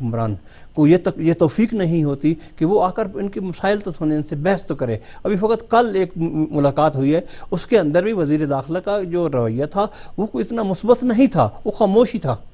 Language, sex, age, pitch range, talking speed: English, male, 50-69, 150-210 Hz, 190 wpm